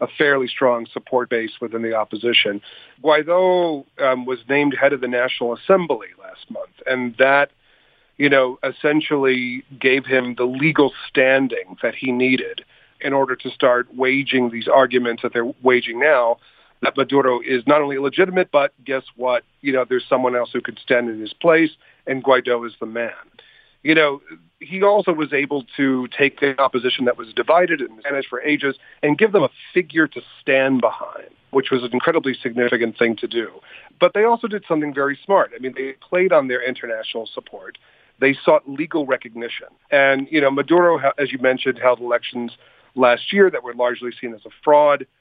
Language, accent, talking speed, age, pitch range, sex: English, American, 185 wpm, 40-59, 125-150 Hz, male